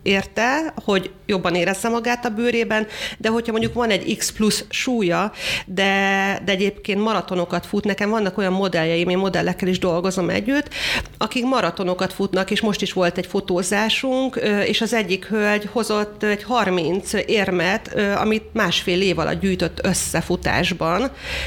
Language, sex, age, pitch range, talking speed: Hungarian, female, 40-59, 180-220 Hz, 145 wpm